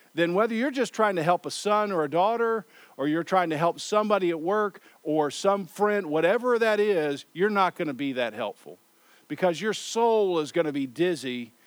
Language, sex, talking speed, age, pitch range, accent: English, male, 210 wpm, 50-69, 145-180 Hz, American